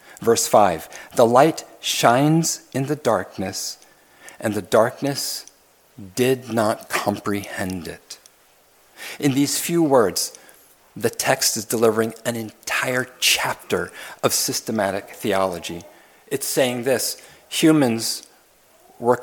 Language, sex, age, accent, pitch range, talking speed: English, male, 50-69, American, 110-135 Hz, 105 wpm